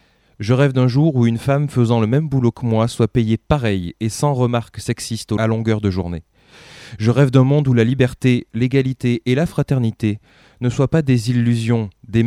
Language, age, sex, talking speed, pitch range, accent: French, 20-39, male, 200 wpm, 105-130 Hz, French